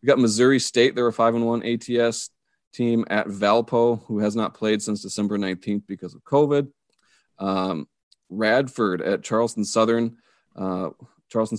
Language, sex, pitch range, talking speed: English, male, 100-120 Hz, 145 wpm